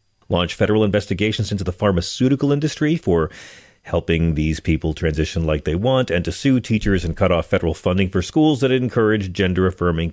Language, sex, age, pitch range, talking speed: English, male, 40-59, 85-130 Hz, 180 wpm